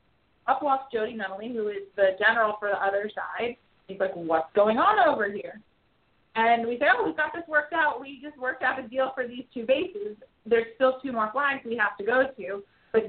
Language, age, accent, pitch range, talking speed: English, 30-49, American, 205-250 Hz, 225 wpm